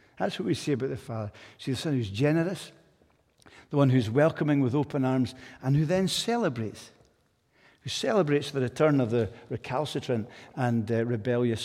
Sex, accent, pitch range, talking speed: male, British, 125-160 Hz, 175 wpm